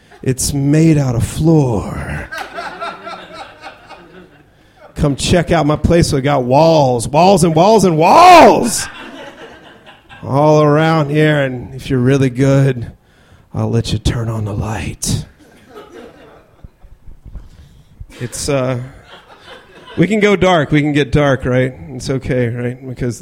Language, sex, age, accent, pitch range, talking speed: English, male, 40-59, American, 120-155 Hz, 125 wpm